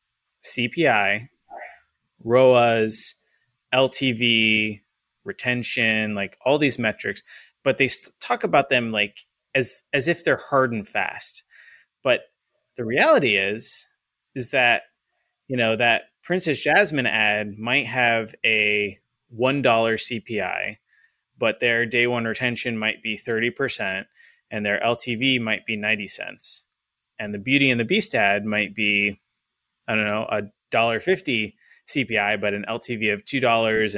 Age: 20-39